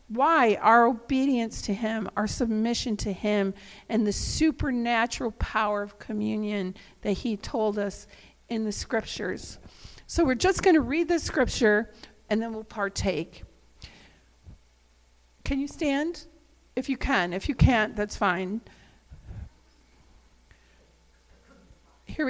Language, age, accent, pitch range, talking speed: English, 50-69, American, 210-295 Hz, 125 wpm